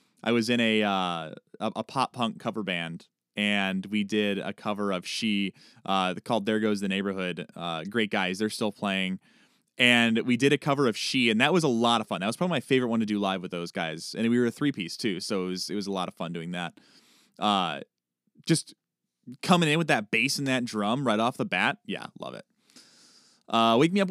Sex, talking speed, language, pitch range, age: male, 230 wpm, English, 95-120 Hz, 20-39